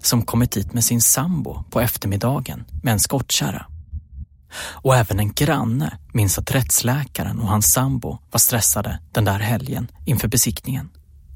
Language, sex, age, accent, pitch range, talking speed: Swedish, male, 30-49, native, 105-135 Hz, 150 wpm